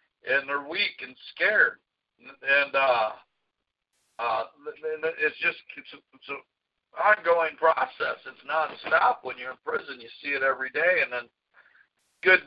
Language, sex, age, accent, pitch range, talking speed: English, male, 60-79, American, 160-205 Hz, 130 wpm